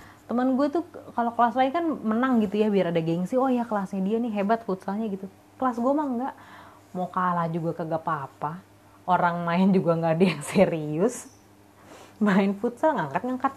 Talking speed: 175 wpm